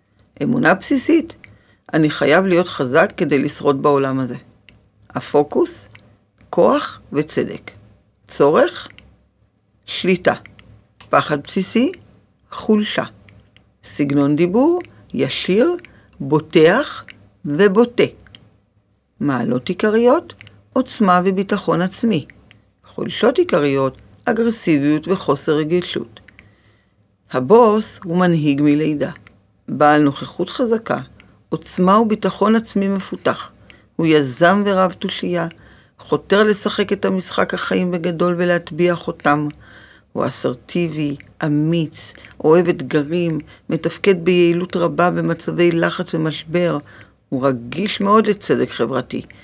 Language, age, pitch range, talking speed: Hebrew, 50-69, 125-190 Hz, 90 wpm